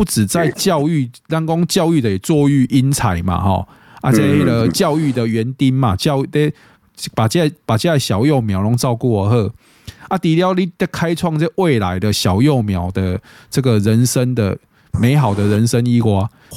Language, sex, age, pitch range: Chinese, male, 20-39, 110-155 Hz